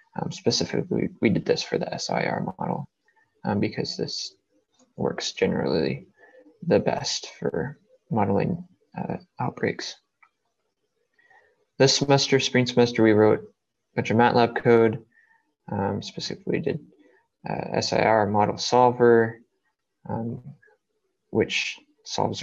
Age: 20-39